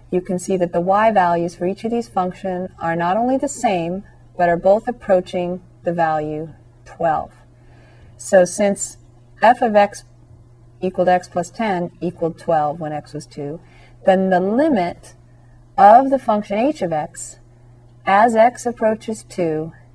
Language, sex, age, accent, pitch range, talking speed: English, female, 40-59, American, 125-200 Hz, 155 wpm